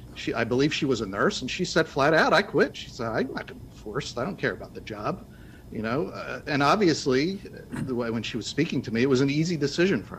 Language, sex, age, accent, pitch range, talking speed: English, male, 50-69, American, 120-155 Hz, 275 wpm